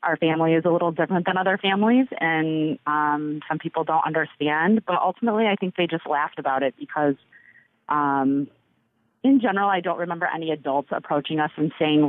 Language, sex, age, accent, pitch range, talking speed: English, female, 30-49, American, 145-170 Hz, 185 wpm